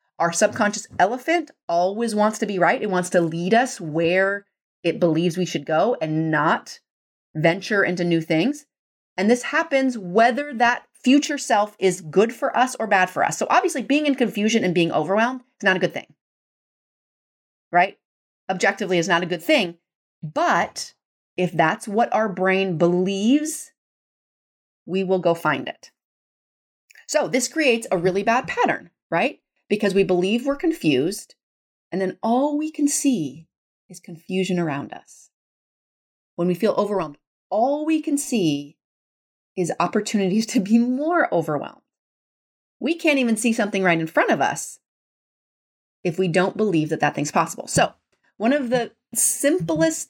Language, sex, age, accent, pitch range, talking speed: English, female, 30-49, American, 180-250 Hz, 160 wpm